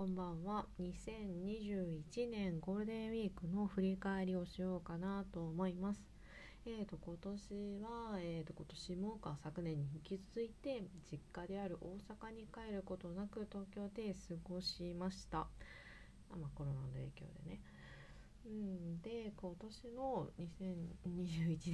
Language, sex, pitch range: Japanese, female, 160-205 Hz